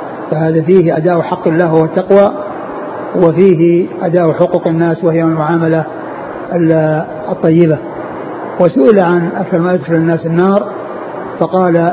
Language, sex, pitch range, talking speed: Arabic, male, 160-185 Hz, 105 wpm